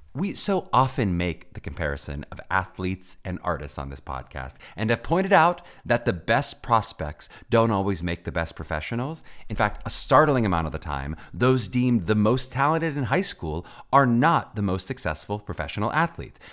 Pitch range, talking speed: 90-140 Hz, 180 wpm